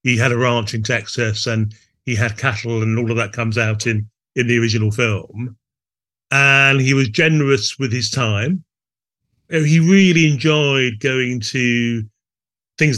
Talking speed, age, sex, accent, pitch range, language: 155 wpm, 30-49, male, British, 115-140 Hz, English